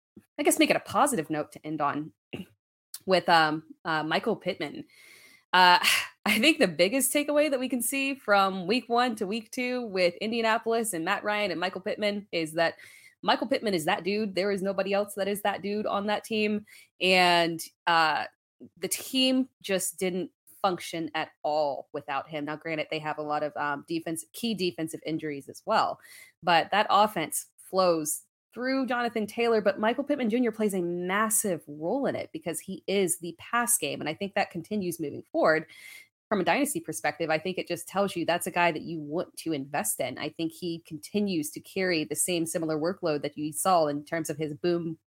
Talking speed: 200 wpm